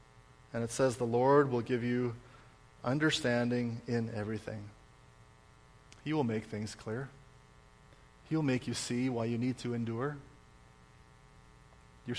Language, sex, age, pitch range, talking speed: English, male, 40-59, 110-140 Hz, 135 wpm